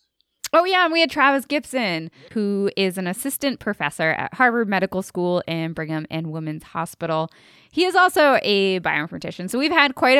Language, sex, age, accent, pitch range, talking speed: English, female, 20-39, American, 175-235 Hz, 175 wpm